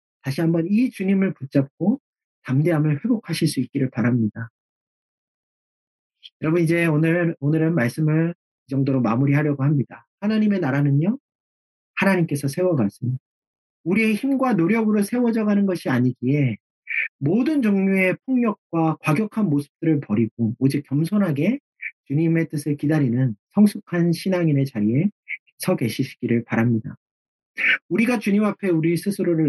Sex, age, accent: male, 40-59, native